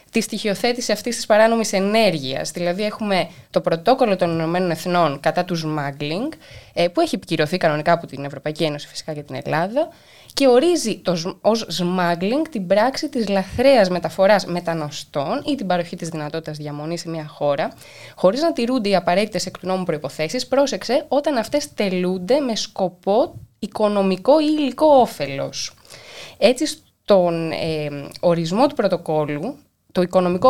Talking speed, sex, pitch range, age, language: 145 wpm, female, 170-235 Hz, 20-39, Greek